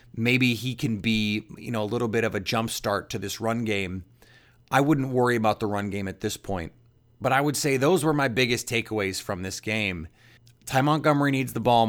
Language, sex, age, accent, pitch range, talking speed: English, male, 30-49, American, 105-125 Hz, 220 wpm